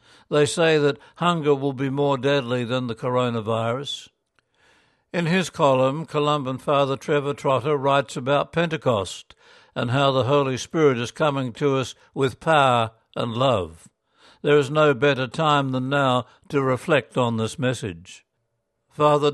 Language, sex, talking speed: English, male, 145 wpm